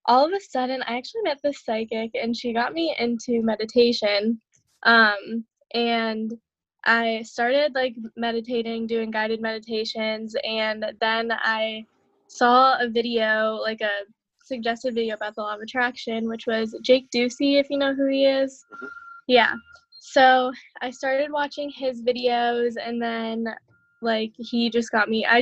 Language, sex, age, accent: English, female, 10-29, American